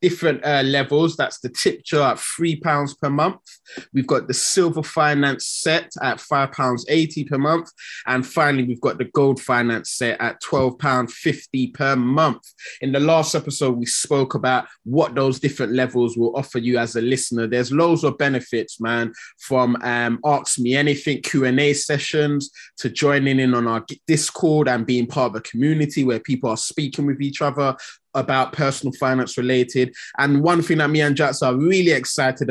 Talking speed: 175 wpm